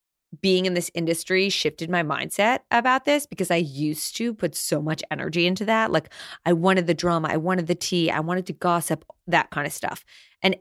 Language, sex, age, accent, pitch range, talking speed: English, female, 20-39, American, 165-230 Hz, 210 wpm